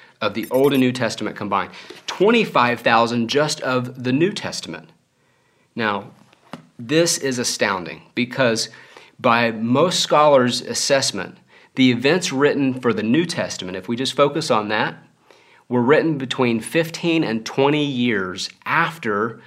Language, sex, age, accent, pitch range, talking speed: English, male, 40-59, American, 125-180 Hz, 135 wpm